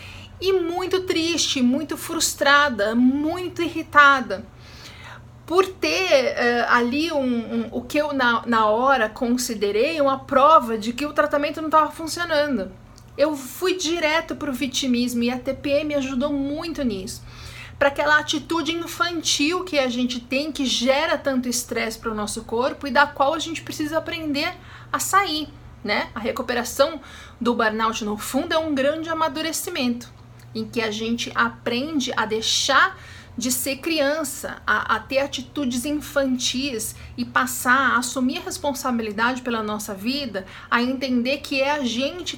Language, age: Portuguese, 40-59